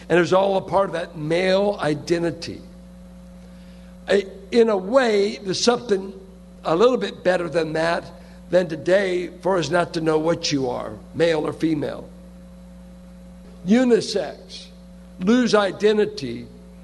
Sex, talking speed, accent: male, 130 wpm, American